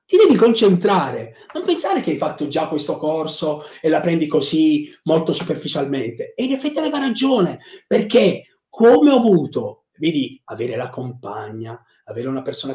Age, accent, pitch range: 30-49, native, 150-200 Hz